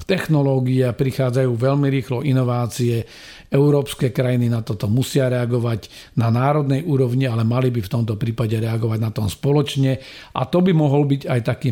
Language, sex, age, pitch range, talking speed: Slovak, male, 50-69, 120-140 Hz, 160 wpm